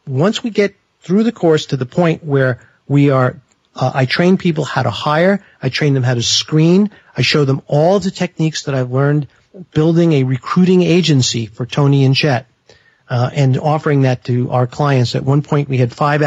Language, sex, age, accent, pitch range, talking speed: English, male, 50-69, American, 130-160 Hz, 205 wpm